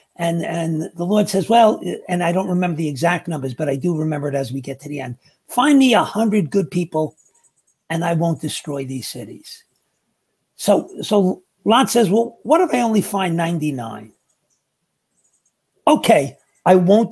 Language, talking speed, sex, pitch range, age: English, 170 wpm, male, 160-215 Hz, 50-69